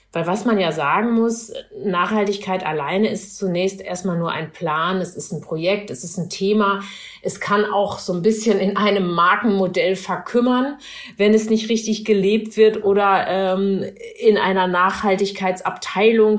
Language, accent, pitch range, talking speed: German, German, 180-210 Hz, 155 wpm